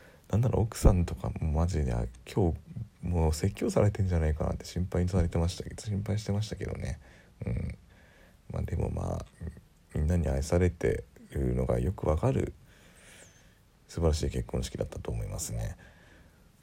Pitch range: 70-90 Hz